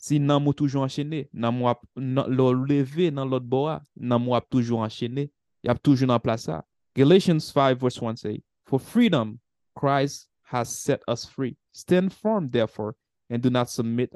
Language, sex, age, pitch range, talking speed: English, male, 20-39, 115-140 Hz, 80 wpm